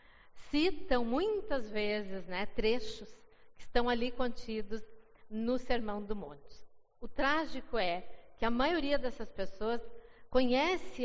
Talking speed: 120 wpm